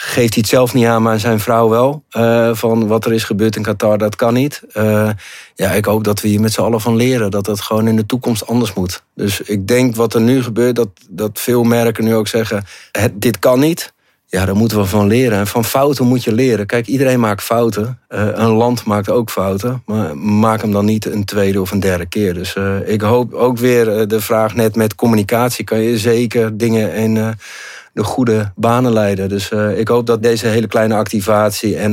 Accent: Dutch